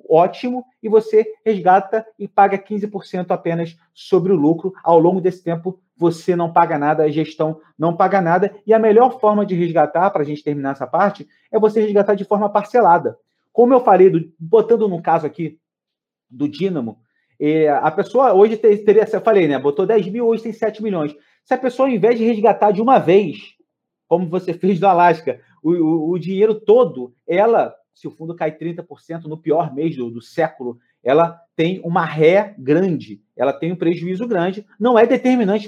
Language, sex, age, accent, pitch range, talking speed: Portuguese, male, 40-59, Brazilian, 165-215 Hz, 185 wpm